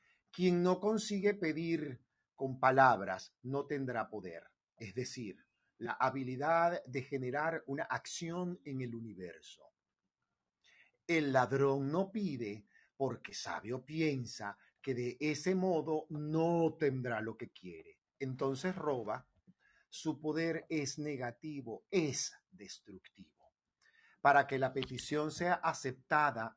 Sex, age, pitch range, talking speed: male, 50-69, 130-160 Hz, 115 wpm